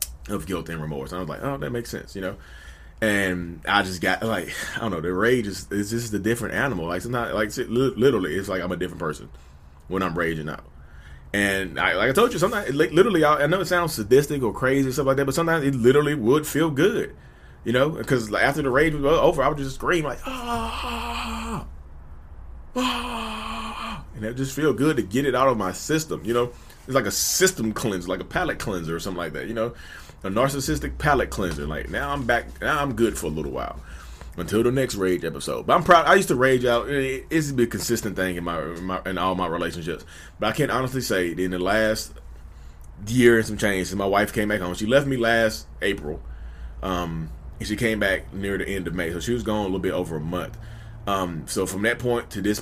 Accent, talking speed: American, 235 wpm